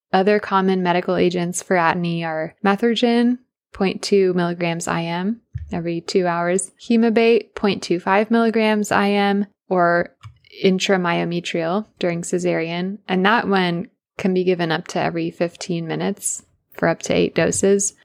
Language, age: English, 20-39